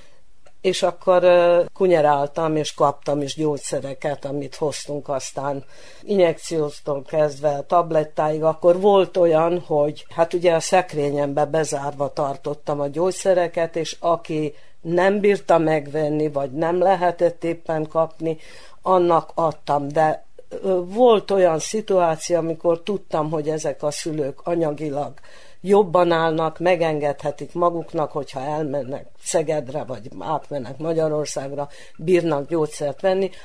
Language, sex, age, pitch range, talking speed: Hungarian, female, 50-69, 150-180 Hz, 110 wpm